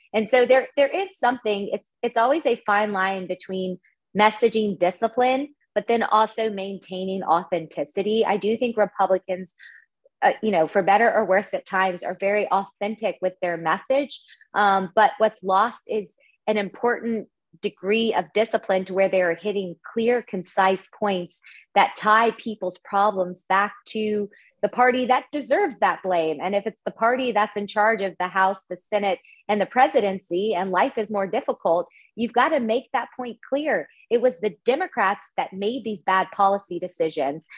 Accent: American